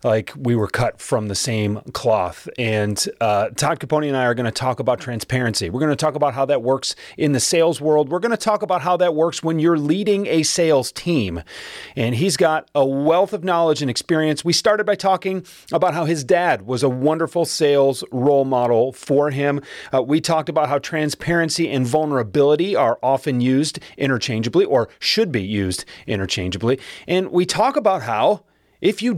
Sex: male